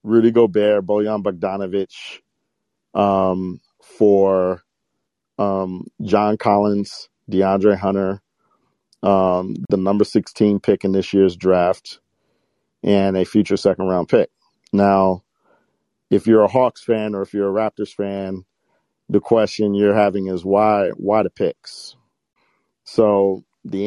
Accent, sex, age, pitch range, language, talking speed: American, male, 40-59, 95-110 Hz, English, 125 wpm